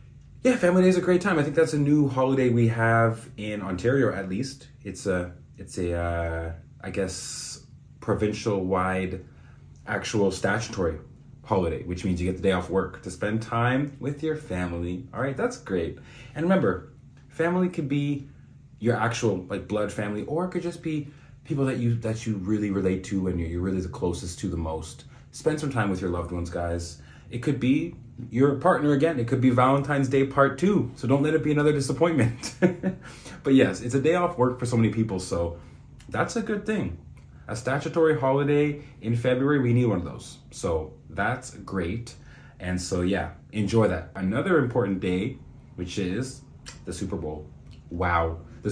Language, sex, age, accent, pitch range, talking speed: English, male, 30-49, American, 90-140 Hz, 185 wpm